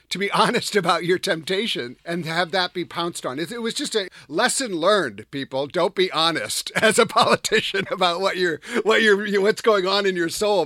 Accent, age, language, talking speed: American, 50-69, English, 205 wpm